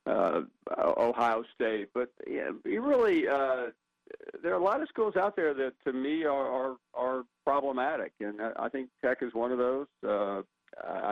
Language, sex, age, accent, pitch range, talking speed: English, male, 50-69, American, 105-125 Hz, 165 wpm